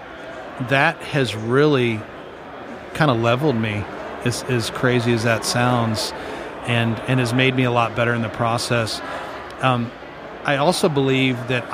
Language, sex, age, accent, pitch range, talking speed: English, male, 40-59, American, 115-135 Hz, 150 wpm